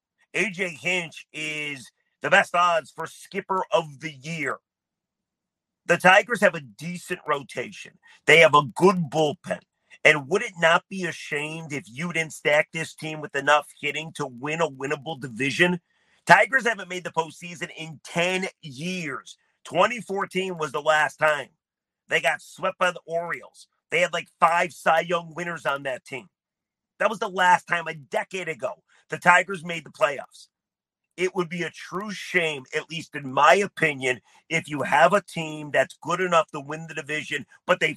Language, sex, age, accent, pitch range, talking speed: English, male, 40-59, American, 150-180 Hz, 170 wpm